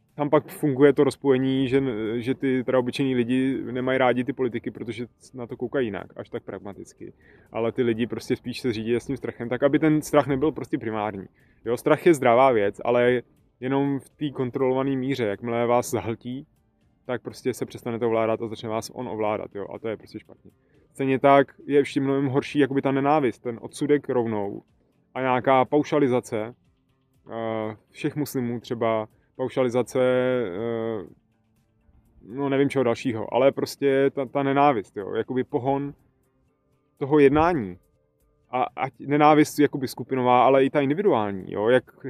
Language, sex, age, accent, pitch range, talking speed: Czech, male, 20-39, native, 115-135 Hz, 160 wpm